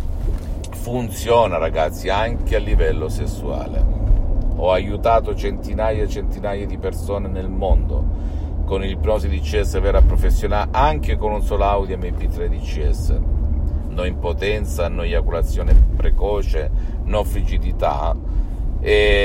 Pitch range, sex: 75-100 Hz, male